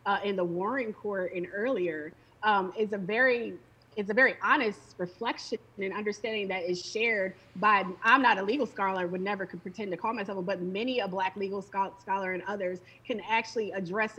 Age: 20-39